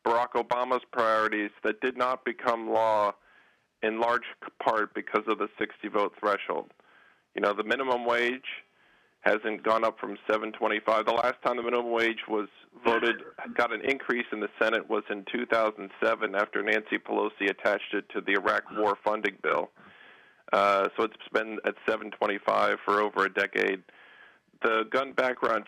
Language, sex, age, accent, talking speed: English, male, 40-59, American, 155 wpm